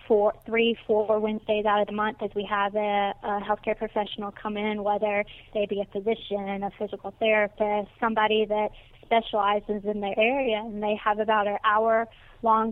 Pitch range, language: 210-225 Hz, English